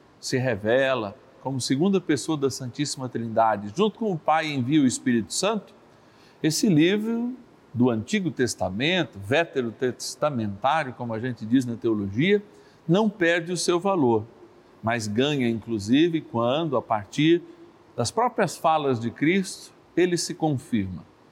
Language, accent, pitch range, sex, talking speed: Portuguese, Brazilian, 125-185 Hz, male, 130 wpm